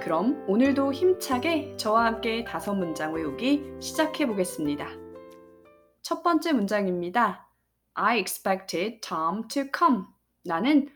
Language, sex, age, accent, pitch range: Korean, female, 20-39, native, 175-280 Hz